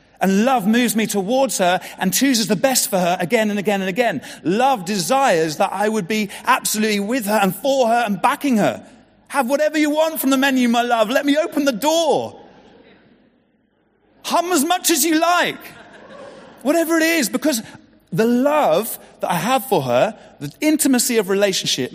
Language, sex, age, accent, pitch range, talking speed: English, male, 40-59, British, 150-255 Hz, 185 wpm